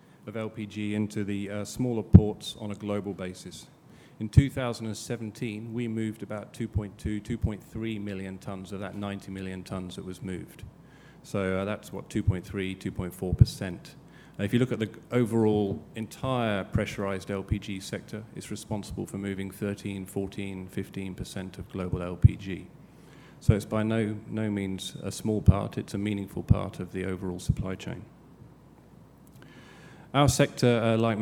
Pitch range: 95-110 Hz